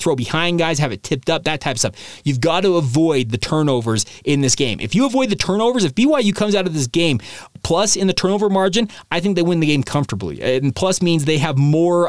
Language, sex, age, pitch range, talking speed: English, male, 30-49, 130-180 Hz, 250 wpm